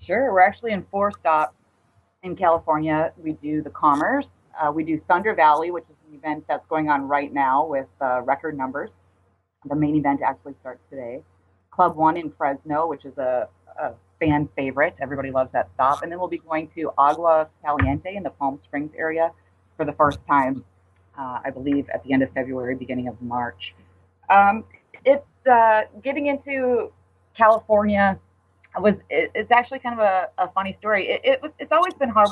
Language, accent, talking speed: English, American, 190 wpm